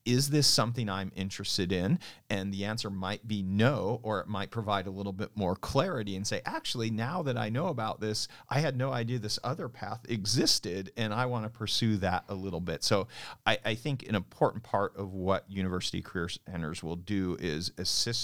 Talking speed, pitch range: 205 wpm, 95-115 Hz